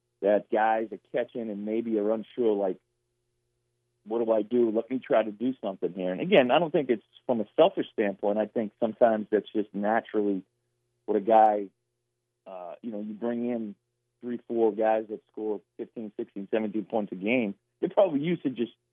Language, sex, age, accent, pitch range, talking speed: English, male, 40-59, American, 110-120 Hz, 195 wpm